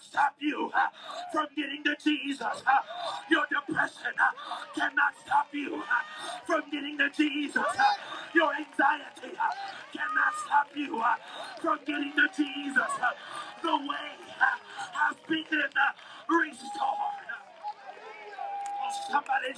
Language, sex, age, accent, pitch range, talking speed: English, male, 40-59, American, 255-335 Hz, 125 wpm